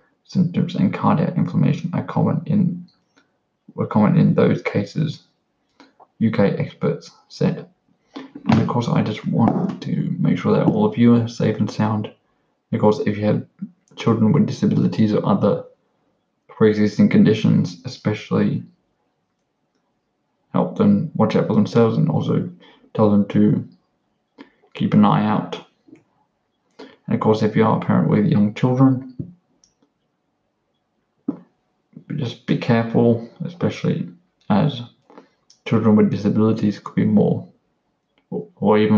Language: English